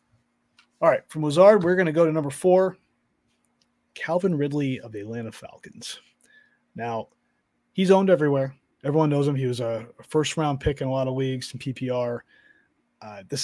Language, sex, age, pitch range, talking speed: English, male, 30-49, 120-150 Hz, 170 wpm